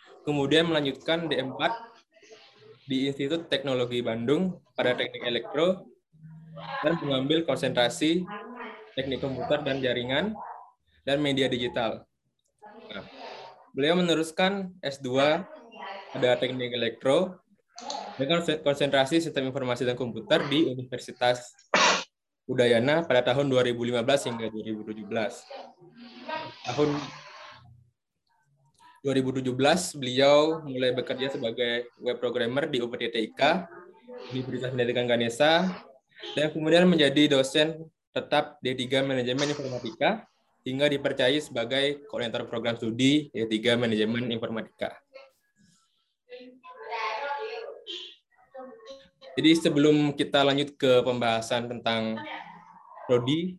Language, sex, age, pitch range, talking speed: Indonesian, male, 20-39, 125-165 Hz, 90 wpm